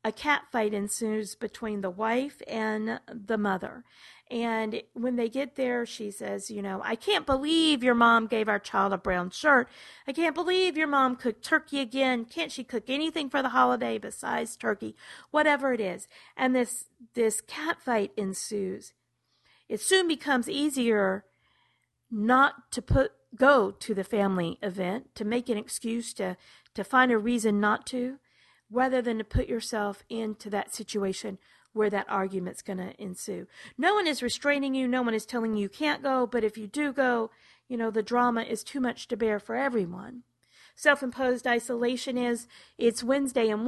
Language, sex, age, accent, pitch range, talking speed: English, female, 40-59, American, 215-270 Hz, 175 wpm